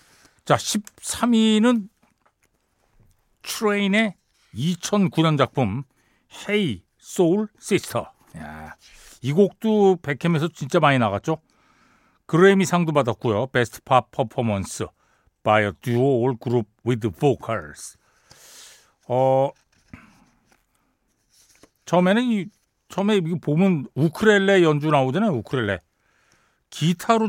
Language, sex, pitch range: Korean, male, 125-190 Hz